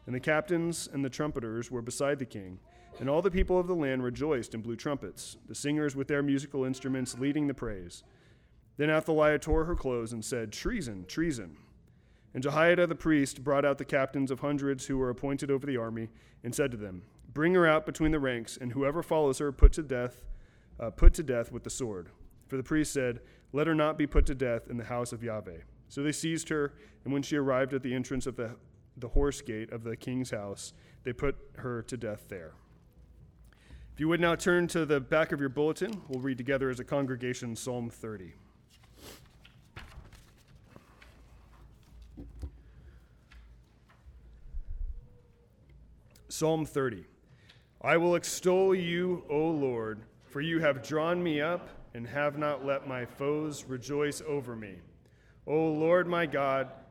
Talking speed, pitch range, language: 175 wpm, 120-150 Hz, English